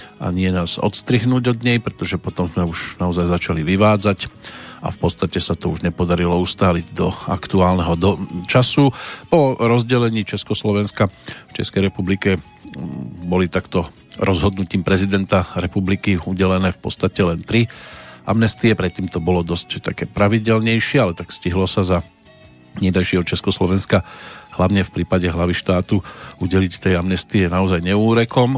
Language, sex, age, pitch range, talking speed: Slovak, male, 40-59, 90-110 Hz, 140 wpm